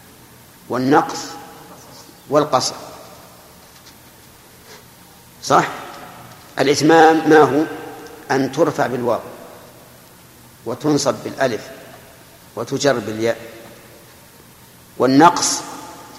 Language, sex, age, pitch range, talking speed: Arabic, male, 50-69, 125-150 Hz, 50 wpm